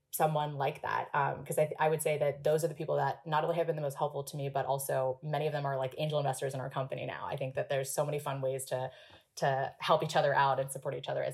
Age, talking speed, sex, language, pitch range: 20-39, 295 wpm, female, English, 150-180 Hz